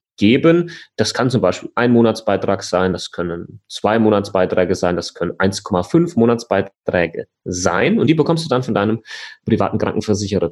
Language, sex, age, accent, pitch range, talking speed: German, male, 30-49, German, 95-115 Hz, 150 wpm